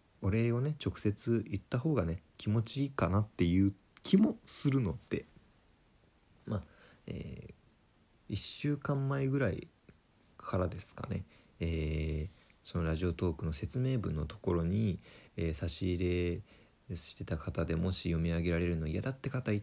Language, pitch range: Japanese, 85-115 Hz